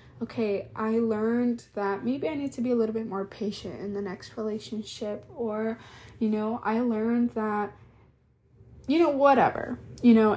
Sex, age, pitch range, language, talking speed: female, 20-39, 200-235 Hz, English, 170 wpm